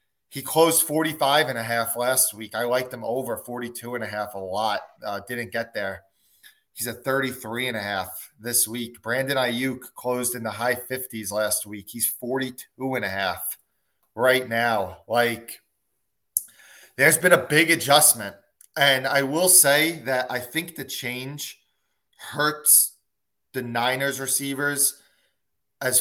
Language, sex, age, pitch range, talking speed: English, male, 30-49, 110-135 Hz, 125 wpm